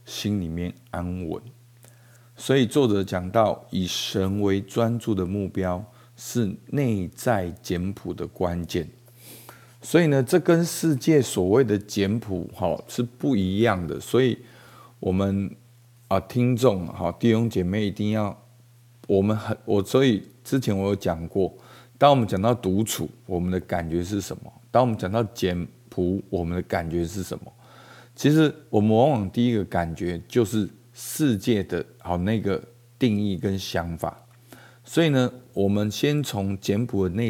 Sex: male